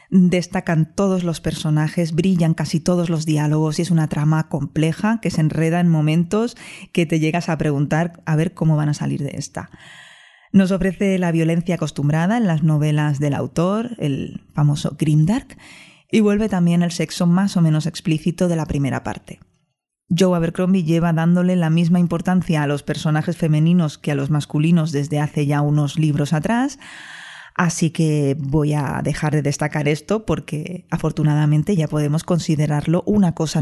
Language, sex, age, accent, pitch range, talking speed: Spanish, female, 20-39, Spanish, 150-180 Hz, 170 wpm